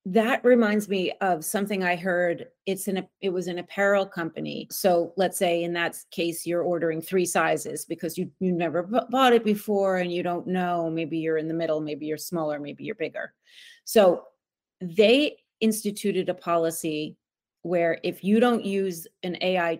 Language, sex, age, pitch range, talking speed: English, female, 30-49, 175-225 Hz, 180 wpm